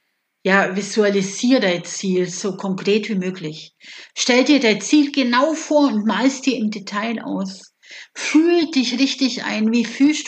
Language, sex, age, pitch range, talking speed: German, female, 50-69, 195-265 Hz, 150 wpm